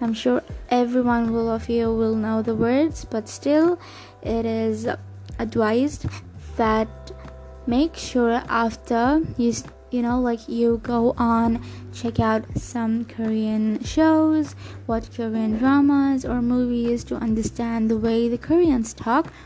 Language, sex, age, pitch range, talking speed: English, female, 20-39, 210-245 Hz, 130 wpm